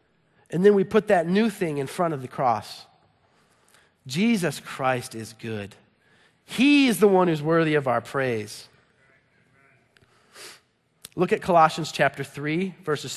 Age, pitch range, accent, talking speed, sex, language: 40-59, 125-200 Hz, American, 140 wpm, male, English